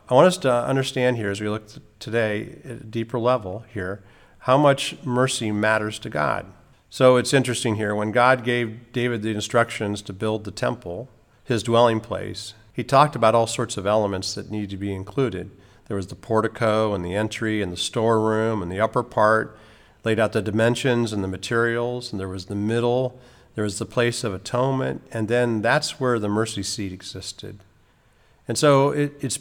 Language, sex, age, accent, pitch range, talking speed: English, male, 50-69, American, 105-125 Hz, 190 wpm